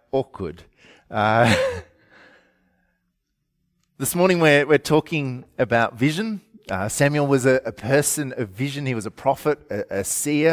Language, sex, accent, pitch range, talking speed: English, male, Australian, 115-140 Hz, 135 wpm